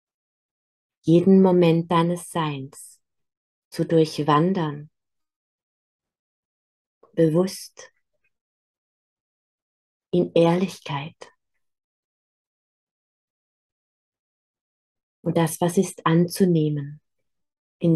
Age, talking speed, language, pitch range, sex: 30-49, 50 wpm, German, 155-180 Hz, female